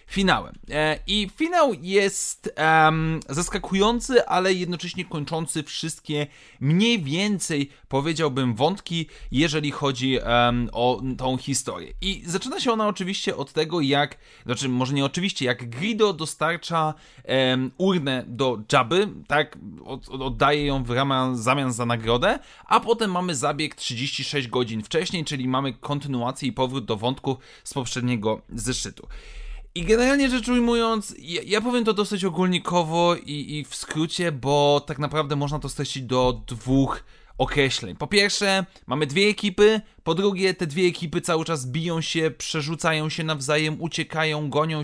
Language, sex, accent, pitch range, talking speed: Polish, male, native, 135-185 Hz, 145 wpm